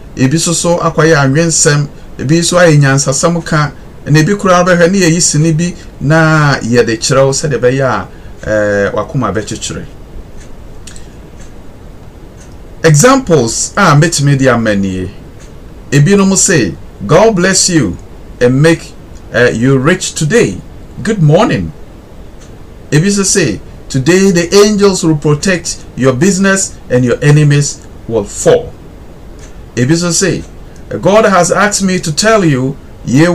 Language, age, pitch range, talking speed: English, 50-69, 125-170 Hz, 120 wpm